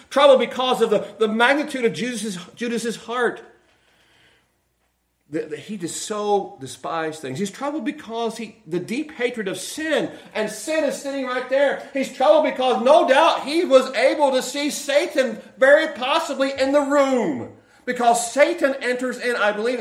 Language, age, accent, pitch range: English, 40-59, American, 205-260 Hz